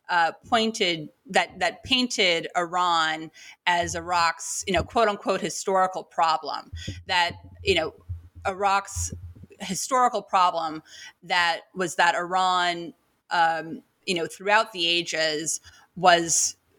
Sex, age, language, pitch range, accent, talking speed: female, 30-49, English, 155-200 Hz, American, 110 wpm